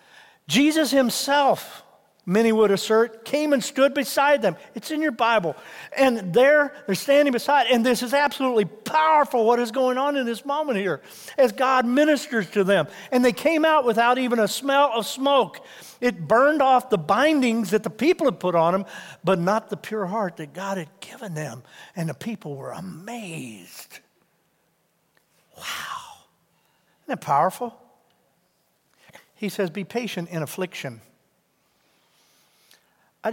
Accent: American